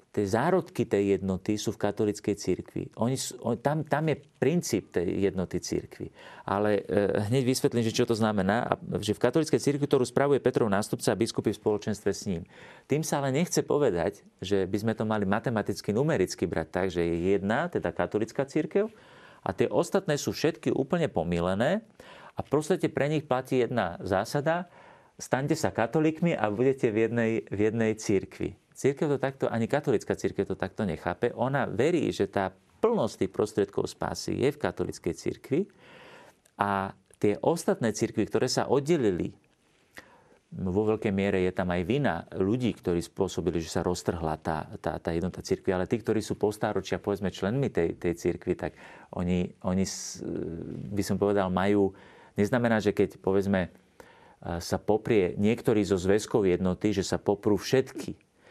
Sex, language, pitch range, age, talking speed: male, Slovak, 95-130 Hz, 40-59, 160 wpm